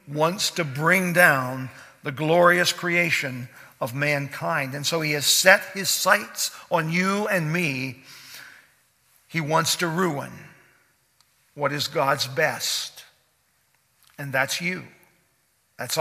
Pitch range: 150-185 Hz